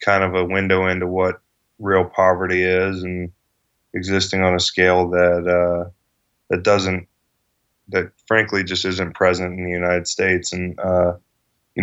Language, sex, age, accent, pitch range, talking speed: English, male, 20-39, American, 90-95 Hz, 150 wpm